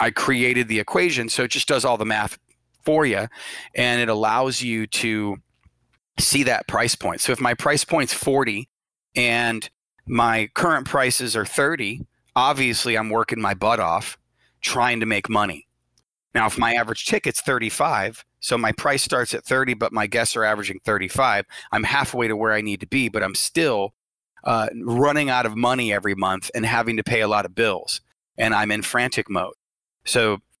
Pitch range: 105-125 Hz